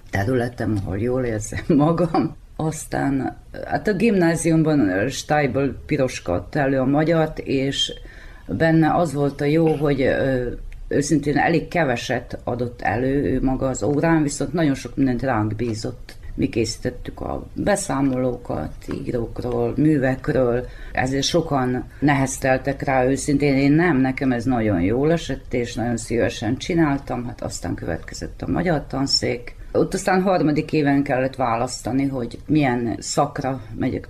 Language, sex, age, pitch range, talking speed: Hungarian, female, 30-49, 120-150 Hz, 130 wpm